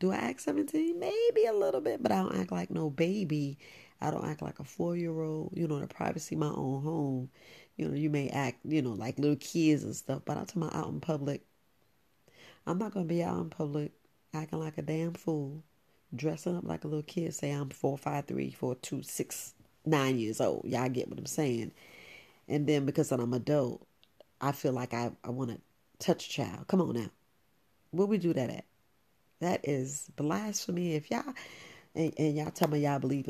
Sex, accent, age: female, American, 40-59